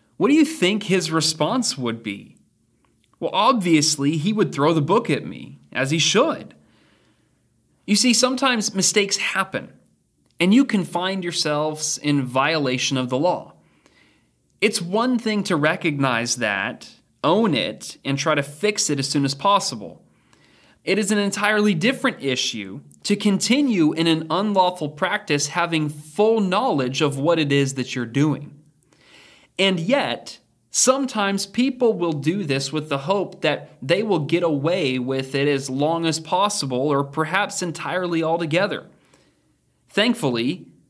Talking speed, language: 145 wpm, English